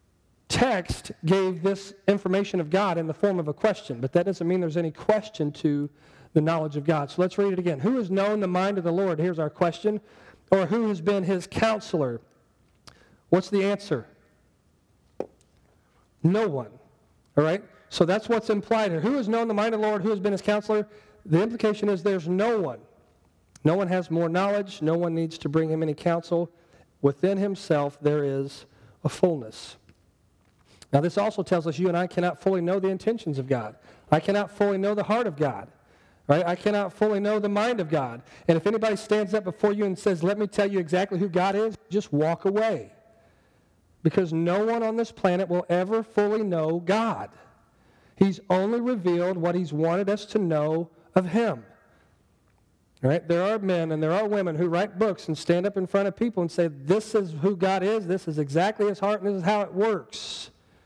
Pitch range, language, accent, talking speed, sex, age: 160-205 Hz, English, American, 205 wpm, male, 40-59